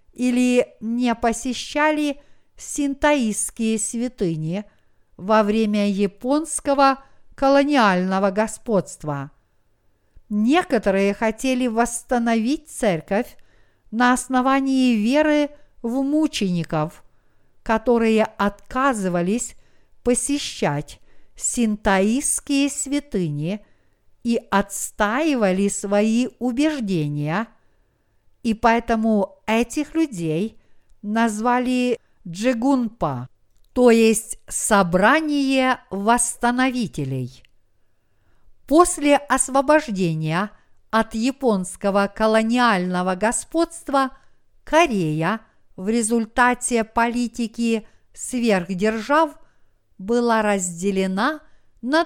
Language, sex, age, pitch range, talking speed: Russian, female, 50-69, 195-260 Hz, 60 wpm